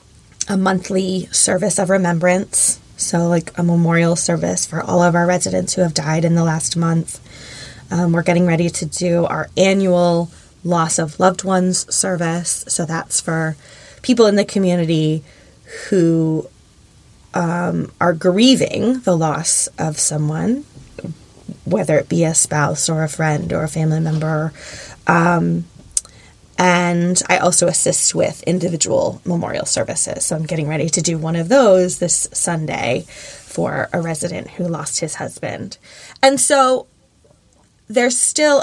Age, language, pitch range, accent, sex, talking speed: 20-39, English, 160-185 Hz, American, female, 145 wpm